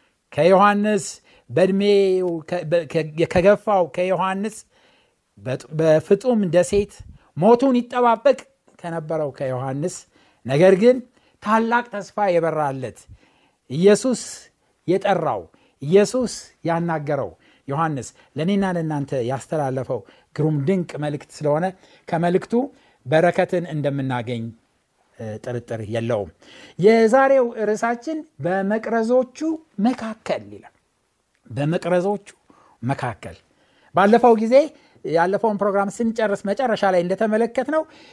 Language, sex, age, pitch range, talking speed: Amharic, male, 60-79, 165-235 Hz, 70 wpm